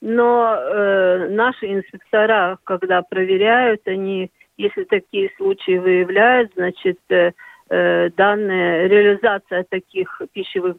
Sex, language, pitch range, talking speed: female, Russian, 190-245 Hz, 95 wpm